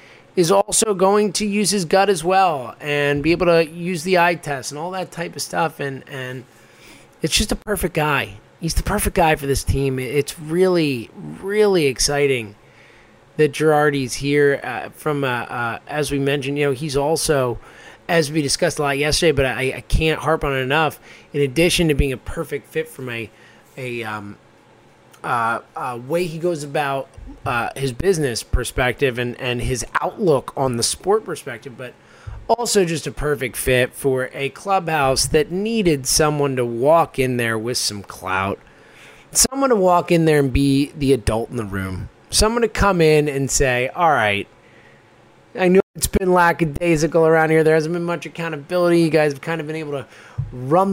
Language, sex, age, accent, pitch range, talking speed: English, male, 20-39, American, 135-175 Hz, 185 wpm